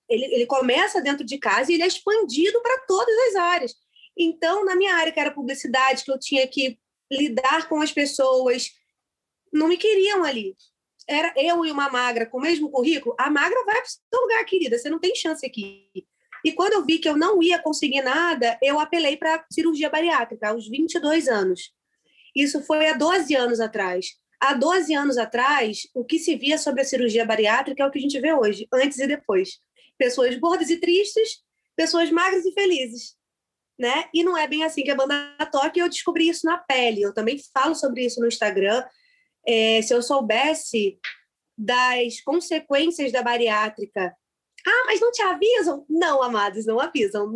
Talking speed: 185 wpm